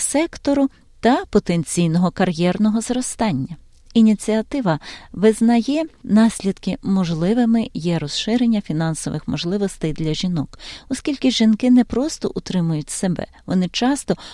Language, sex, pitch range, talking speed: Ukrainian, female, 165-225 Hz, 95 wpm